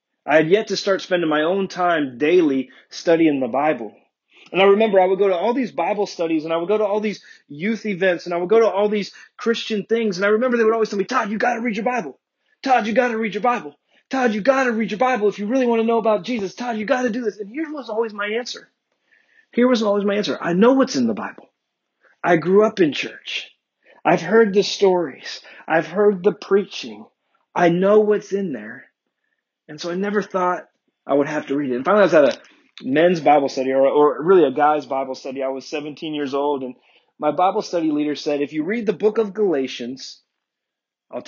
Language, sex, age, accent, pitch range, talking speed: English, male, 30-49, American, 150-220 Hz, 240 wpm